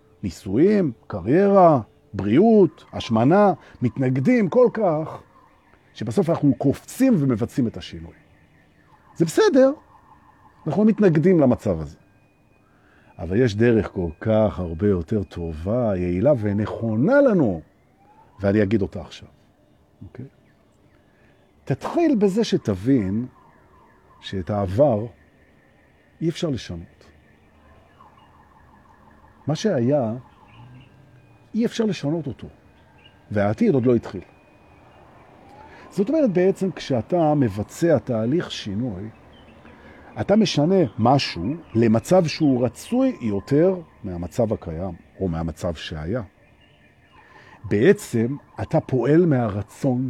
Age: 50-69